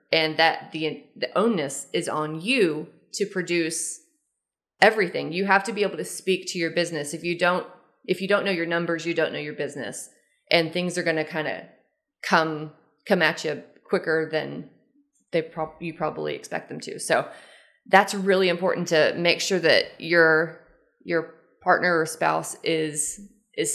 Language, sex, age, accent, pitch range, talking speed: English, female, 30-49, American, 160-195 Hz, 175 wpm